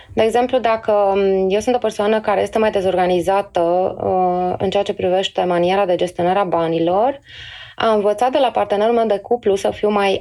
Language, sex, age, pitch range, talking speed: Romanian, female, 20-39, 180-230 Hz, 190 wpm